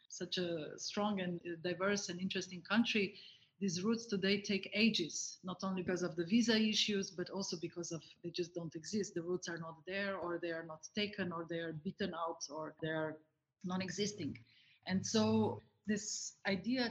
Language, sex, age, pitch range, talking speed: English, female, 30-49, 175-205 Hz, 180 wpm